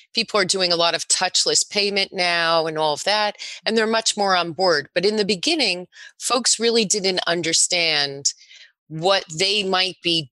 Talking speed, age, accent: 180 wpm, 30-49, American